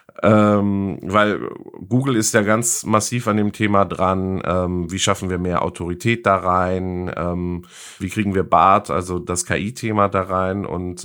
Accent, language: German, German